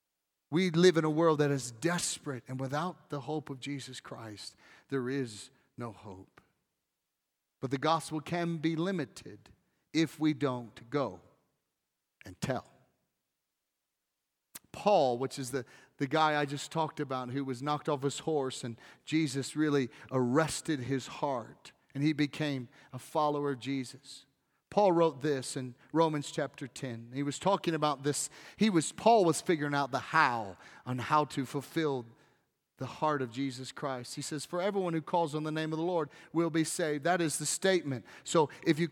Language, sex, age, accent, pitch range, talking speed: English, male, 40-59, American, 135-165 Hz, 175 wpm